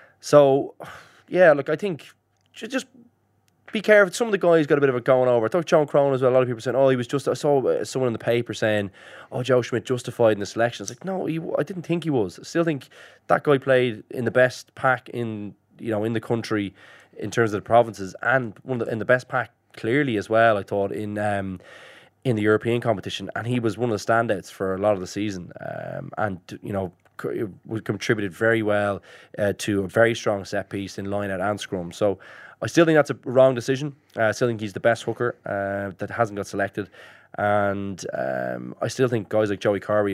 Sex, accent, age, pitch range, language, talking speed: male, Irish, 20-39, 100-125 Hz, English, 240 wpm